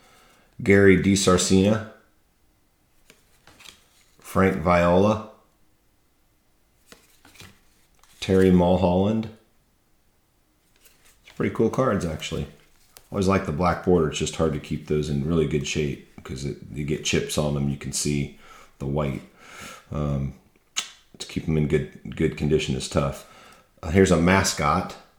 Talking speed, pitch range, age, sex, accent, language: 125 wpm, 75-95 Hz, 40-59, male, American, English